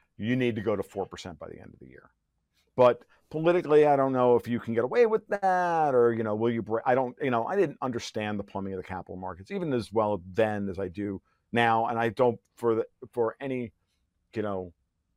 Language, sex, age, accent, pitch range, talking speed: English, male, 50-69, American, 95-120 Hz, 240 wpm